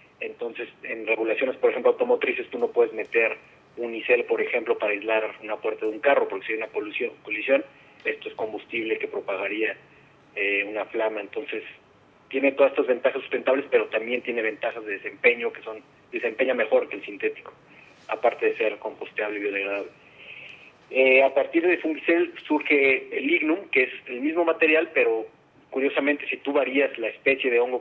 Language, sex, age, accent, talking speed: Spanish, male, 30-49, Mexican, 175 wpm